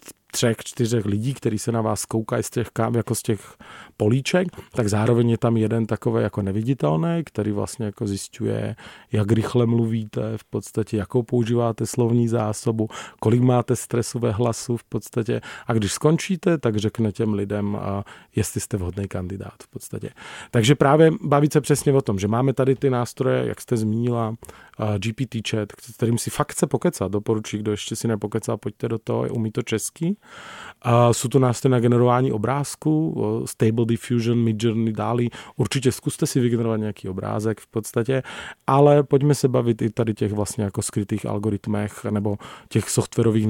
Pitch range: 105-125 Hz